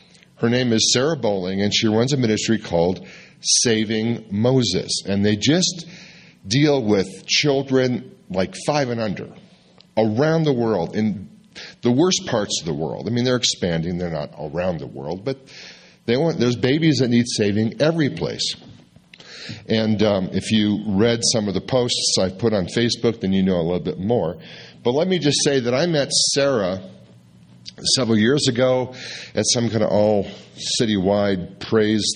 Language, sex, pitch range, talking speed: English, male, 95-130 Hz, 165 wpm